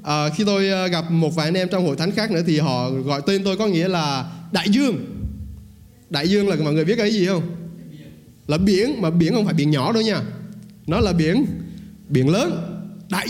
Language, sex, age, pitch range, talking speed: Vietnamese, male, 20-39, 155-210 Hz, 215 wpm